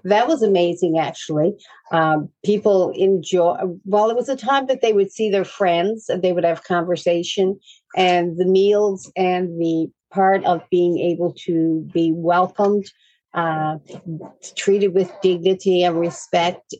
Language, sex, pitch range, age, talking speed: English, female, 165-195 Hz, 50-69, 145 wpm